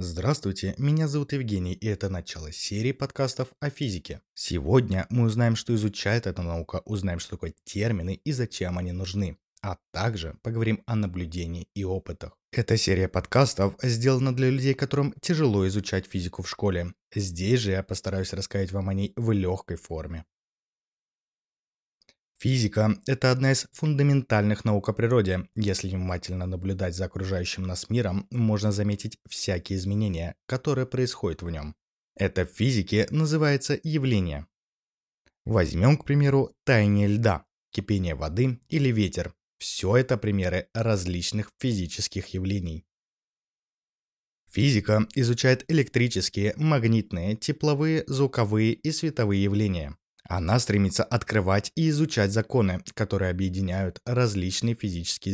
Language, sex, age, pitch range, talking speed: Russian, male, 20-39, 95-120 Hz, 130 wpm